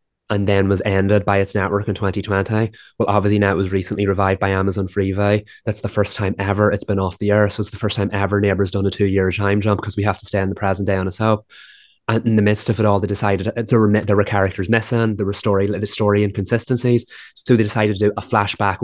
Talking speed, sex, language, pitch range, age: 250 wpm, male, English, 100-115 Hz, 20-39